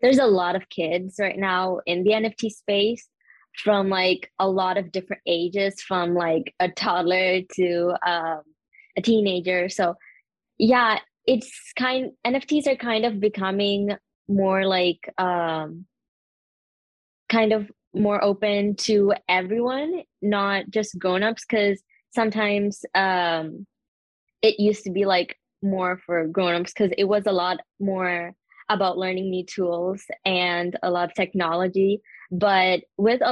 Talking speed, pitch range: 135 wpm, 180-220 Hz